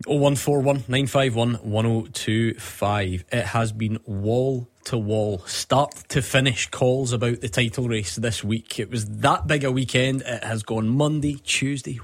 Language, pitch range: English, 110-130 Hz